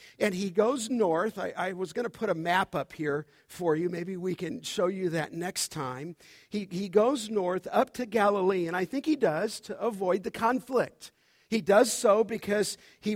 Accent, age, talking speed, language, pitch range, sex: American, 50-69, 205 wpm, English, 180-235 Hz, male